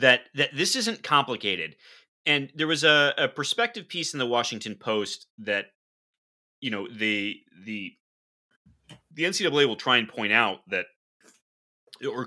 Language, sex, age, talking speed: English, male, 30-49, 145 wpm